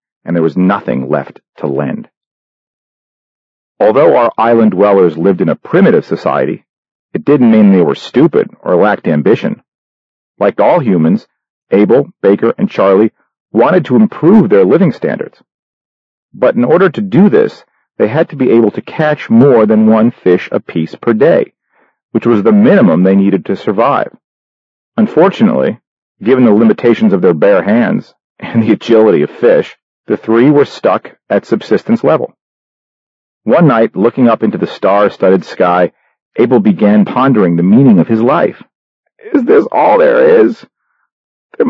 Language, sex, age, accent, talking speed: English, male, 40-59, American, 155 wpm